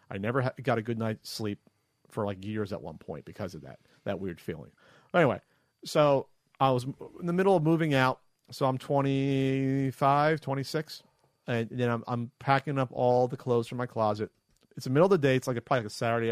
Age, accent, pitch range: 40-59, American, 110-140 Hz